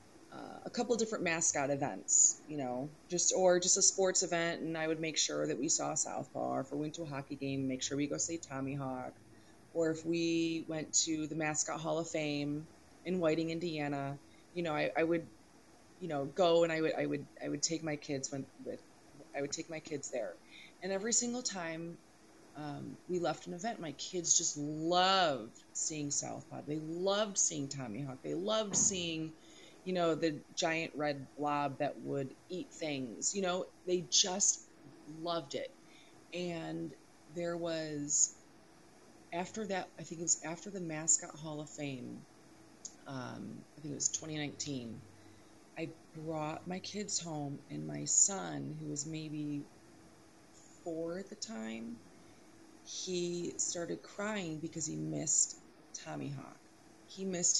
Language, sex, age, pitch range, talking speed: English, female, 30-49, 145-175 Hz, 170 wpm